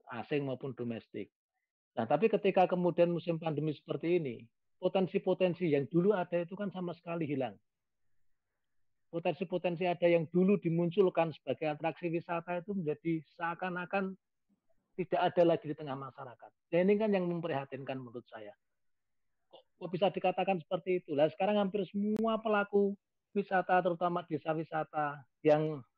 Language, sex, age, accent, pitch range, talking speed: Indonesian, male, 40-59, native, 135-180 Hz, 135 wpm